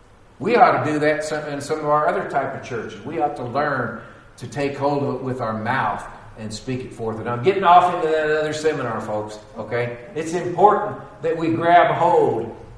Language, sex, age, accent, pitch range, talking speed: English, male, 50-69, American, 120-155 Hz, 210 wpm